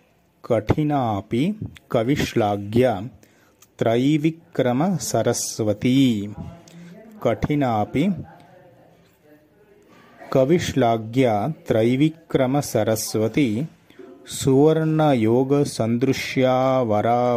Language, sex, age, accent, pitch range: Kannada, male, 30-49, native, 110-145 Hz